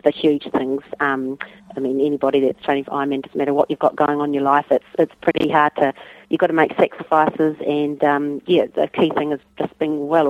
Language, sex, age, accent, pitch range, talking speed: English, female, 30-49, Australian, 145-165 Hz, 240 wpm